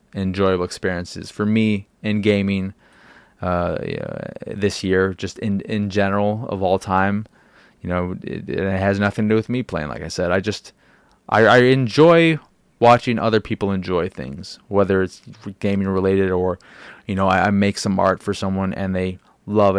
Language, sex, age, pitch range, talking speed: English, male, 20-39, 90-105 Hz, 175 wpm